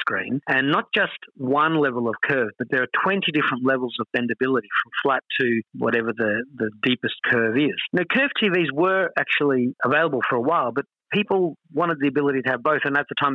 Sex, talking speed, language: male, 205 wpm, English